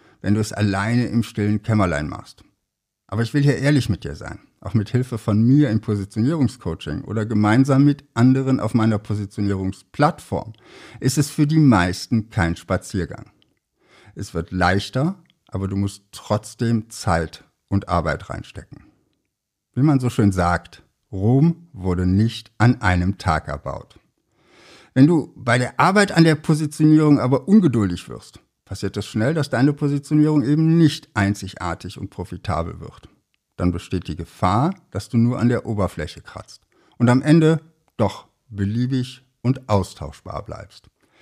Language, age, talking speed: German, 60-79, 150 wpm